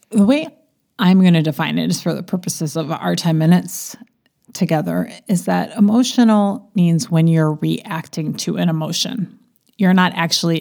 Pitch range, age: 155-205 Hz, 30-49